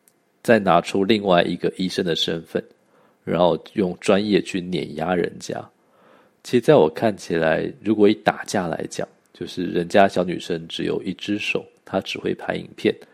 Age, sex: 50-69, male